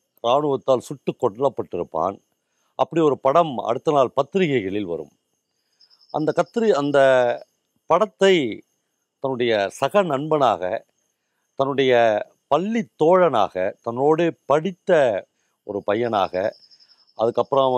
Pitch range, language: 110-150 Hz, Tamil